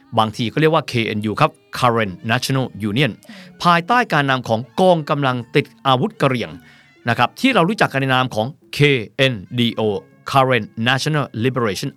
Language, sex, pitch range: Thai, male, 120-170 Hz